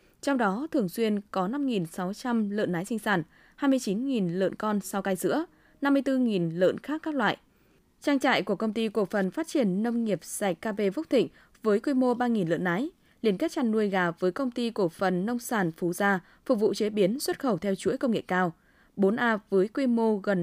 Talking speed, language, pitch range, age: 210 wpm, Vietnamese, 195-265 Hz, 20-39